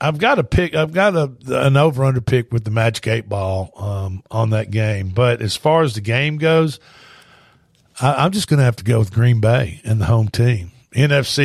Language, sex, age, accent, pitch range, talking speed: English, male, 50-69, American, 115-145 Hz, 225 wpm